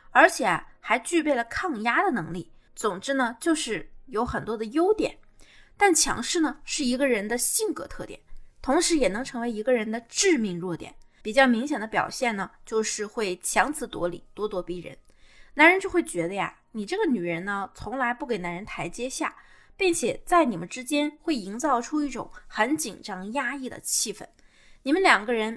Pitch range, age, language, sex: 220-315 Hz, 20-39, Chinese, female